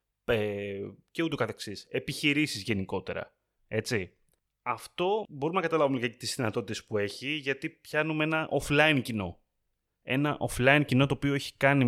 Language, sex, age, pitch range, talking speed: Greek, male, 30-49, 110-145 Hz, 135 wpm